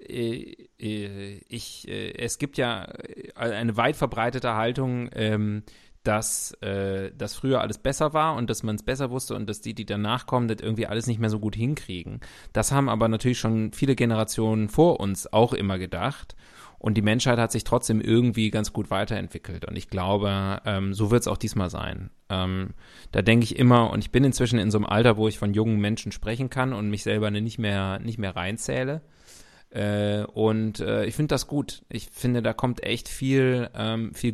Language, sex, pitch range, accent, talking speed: German, male, 105-120 Hz, German, 180 wpm